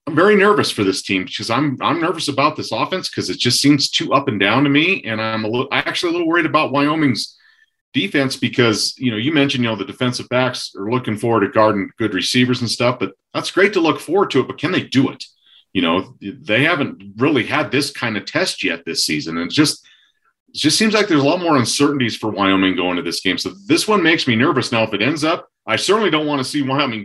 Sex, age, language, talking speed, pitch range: male, 40-59, English, 255 wpm, 110-150 Hz